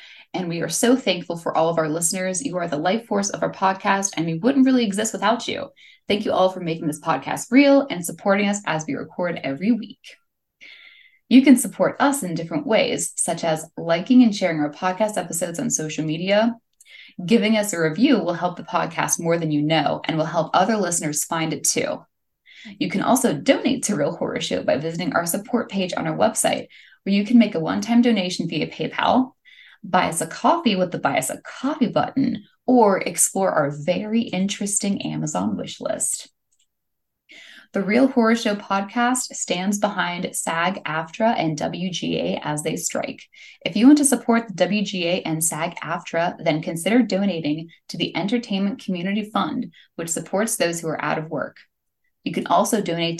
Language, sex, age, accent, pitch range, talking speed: English, female, 10-29, American, 165-230 Hz, 185 wpm